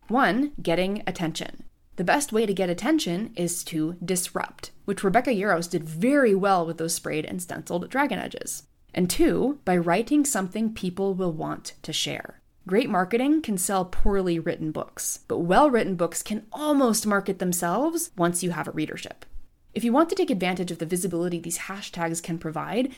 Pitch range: 170-230 Hz